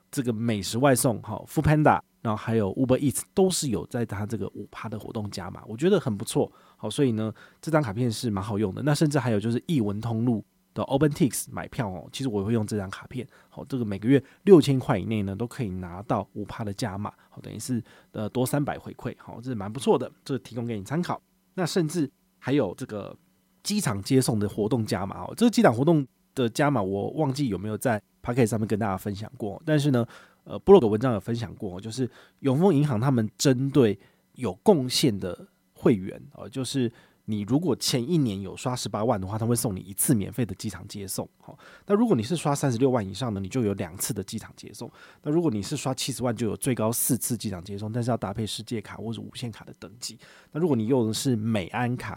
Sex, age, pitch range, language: male, 20-39, 105-135 Hz, Chinese